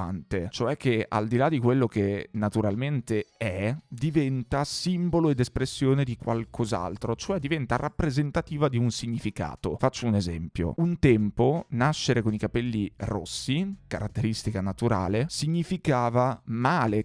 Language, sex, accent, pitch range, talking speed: Italian, male, native, 110-135 Hz, 125 wpm